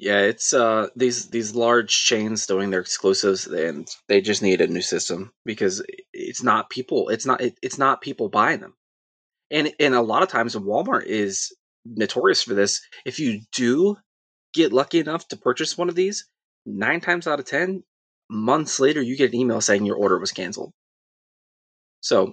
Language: English